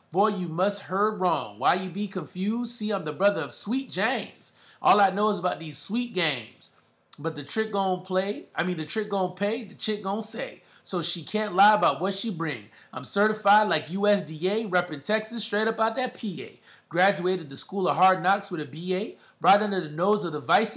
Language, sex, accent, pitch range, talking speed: English, male, American, 170-215 Hz, 215 wpm